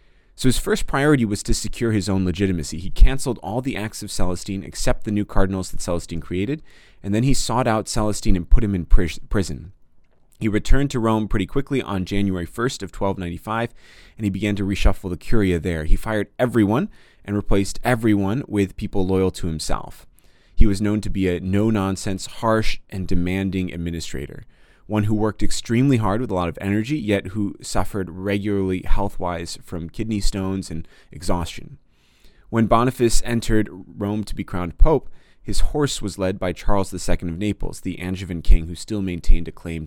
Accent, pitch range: American, 90-110 Hz